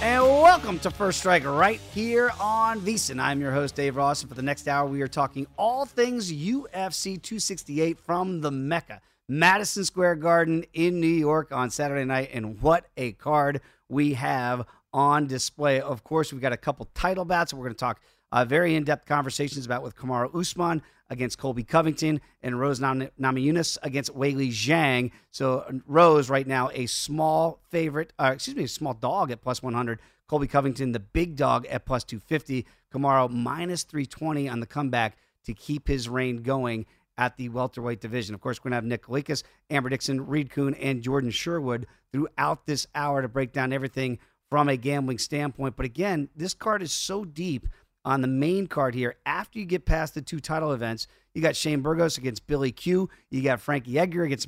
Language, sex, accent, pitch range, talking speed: English, male, American, 130-160 Hz, 190 wpm